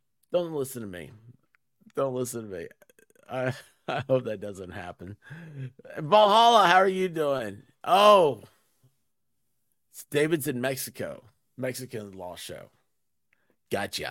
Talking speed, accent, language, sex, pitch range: 115 wpm, American, English, male, 115-155 Hz